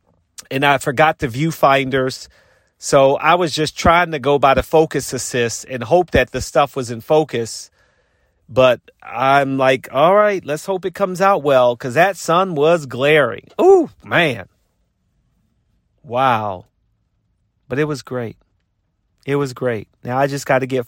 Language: English